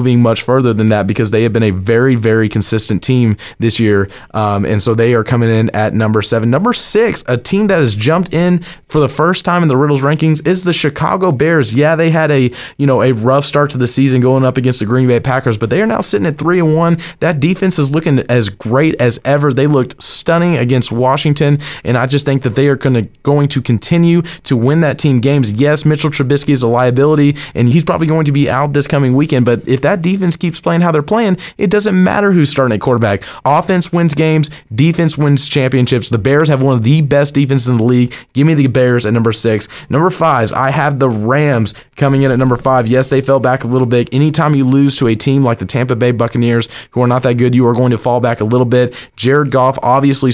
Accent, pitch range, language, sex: American, 120-150 Hz, English, male